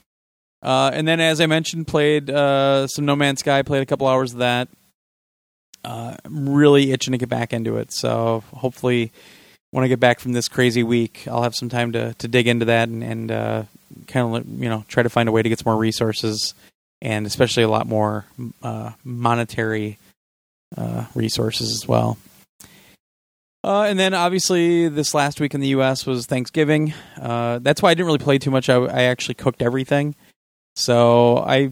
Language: English